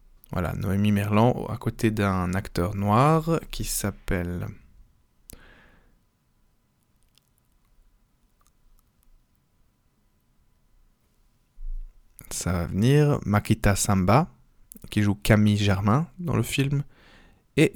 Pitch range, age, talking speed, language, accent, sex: 100-120 Hz, 20-39, 80 wpm, French, French, male